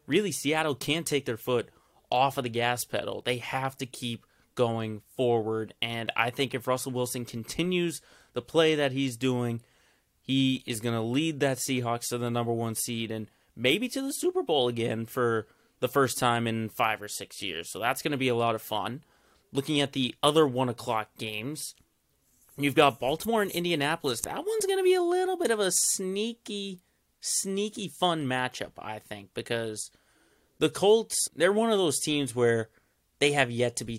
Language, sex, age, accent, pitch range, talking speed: English, male, 30-49, American, 115-150 Hz, 190 wpm